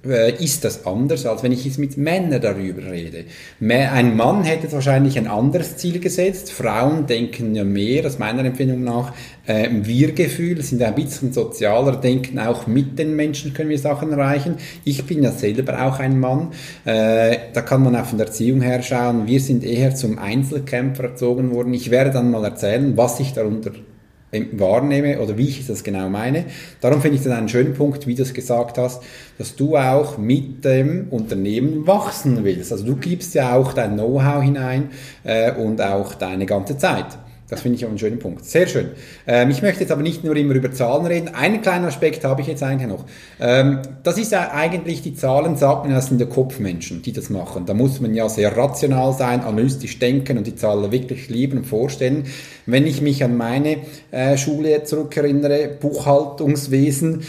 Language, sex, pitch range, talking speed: German, male, 120-145 Hz, 190 wpm